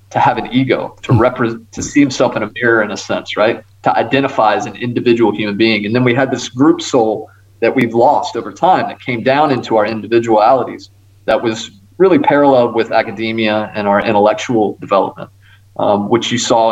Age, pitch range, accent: 30-49, 105-120 Hz, American